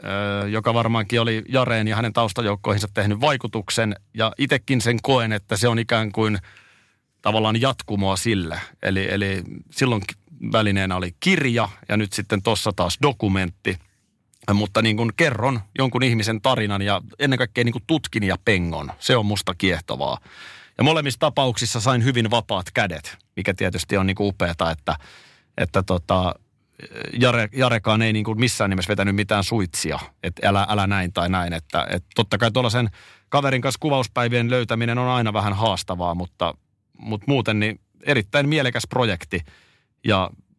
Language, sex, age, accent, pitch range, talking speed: Finnish, male, 30-49, native, 100-120 Hz, 155 wpm